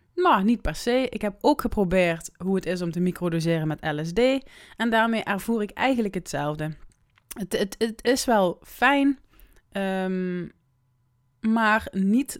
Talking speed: 145 wpm